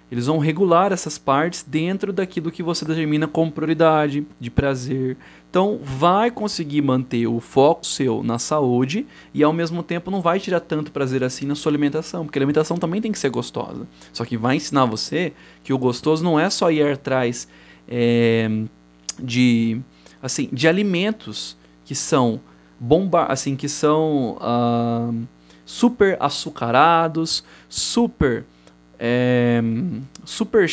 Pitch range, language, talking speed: 120-155 Hz, Portuguese, 145 wpm